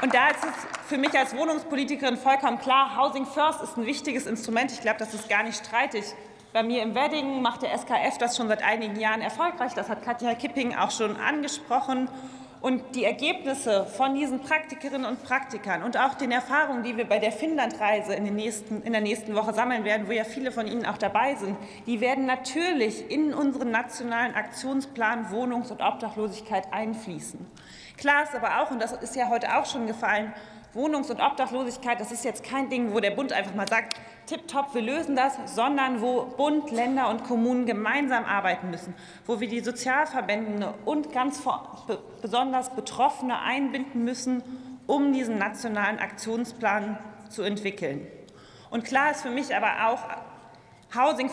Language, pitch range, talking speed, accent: German, 215-265 Hz, 175 wpm, German